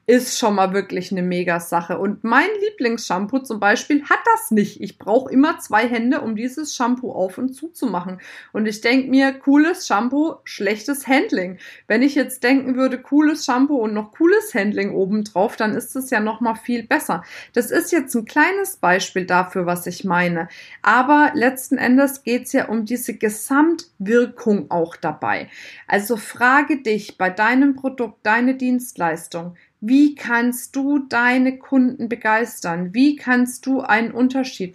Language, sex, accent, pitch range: German, female, German, 200-265 Hz